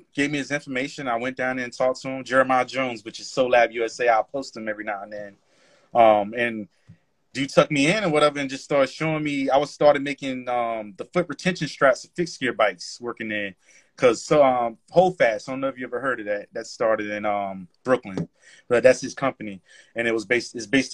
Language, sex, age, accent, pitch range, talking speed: English, male, 30-49, American, 115-145 Hz, 240 wpm